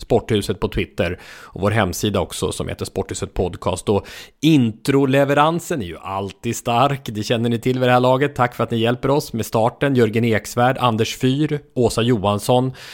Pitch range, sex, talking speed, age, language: 105-140 Hz, male, 180 wpm, 30-49, English